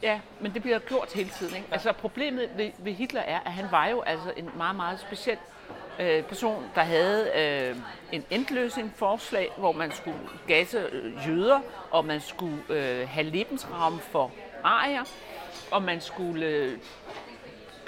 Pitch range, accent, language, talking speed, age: 180-245 Hz, native, Danish, 150 wpm, 60-79